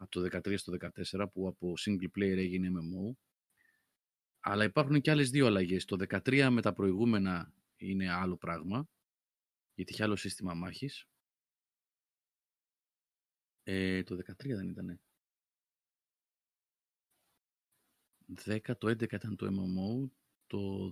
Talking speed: 120 wpm